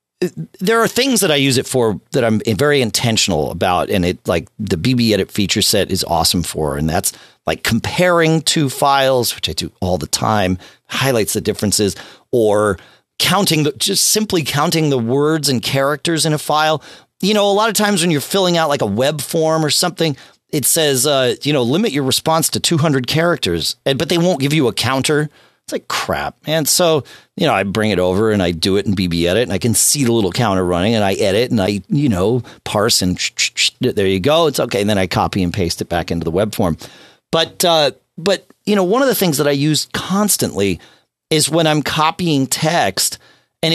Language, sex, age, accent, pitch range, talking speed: English, male, 40-59, American, 105-170 Hz, 215 wpm